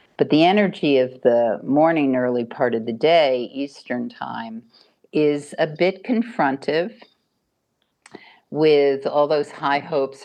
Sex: female